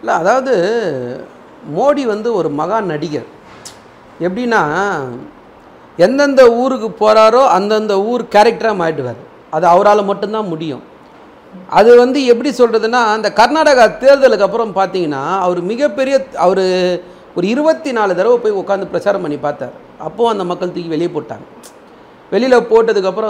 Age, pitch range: 40-59, 170-225 Hz